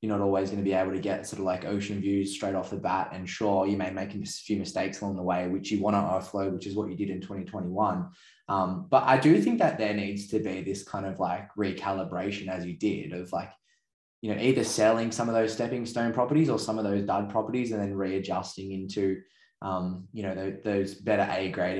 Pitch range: 95-105 Hz